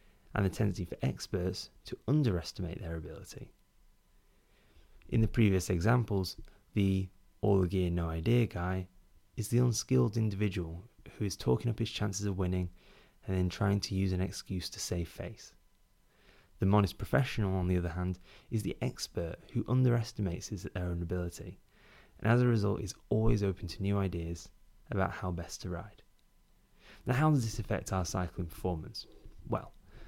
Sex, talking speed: male, 160 wpm